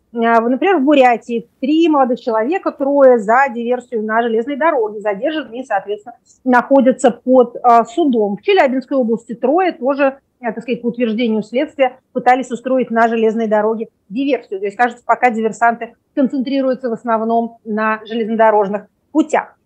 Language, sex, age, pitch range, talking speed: Russian, female, 30-49, 225-275 Hz, 135 wpm